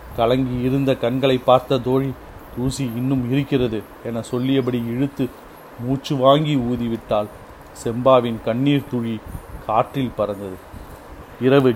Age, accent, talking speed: 40-59, native, 100 wpm